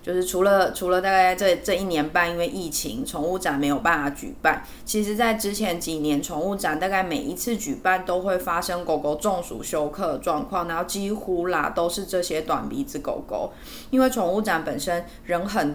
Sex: female